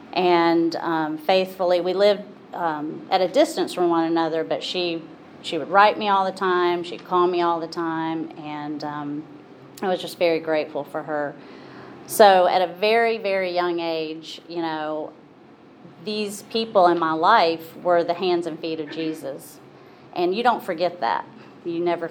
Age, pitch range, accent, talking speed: 30-49, 160-185 Hz, American, 175 wpm